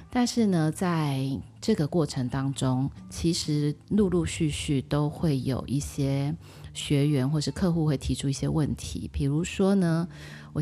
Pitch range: 130-165 Hz